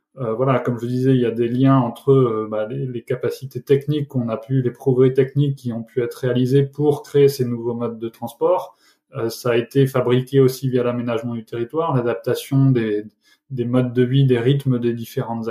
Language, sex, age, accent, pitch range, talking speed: French, male, 20-39, French, 120-135 Hz, 215 wpm